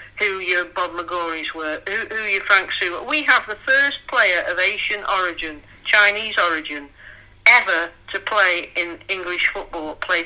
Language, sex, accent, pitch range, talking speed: English, female, British, 175-245 Hz, 160 wpm